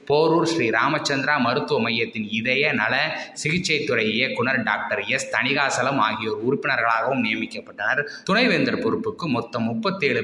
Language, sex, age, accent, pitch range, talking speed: Tamil, male, 20-39, native, 115-185 Hz, 110 wpm